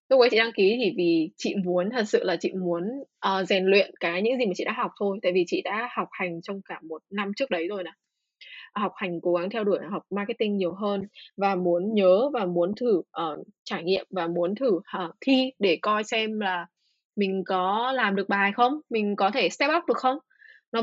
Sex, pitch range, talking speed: female, 180-235 Hz, 225 wpm